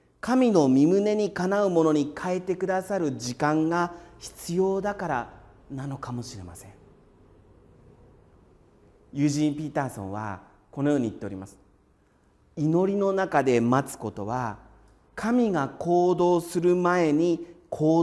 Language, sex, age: Japanese, male, 40-59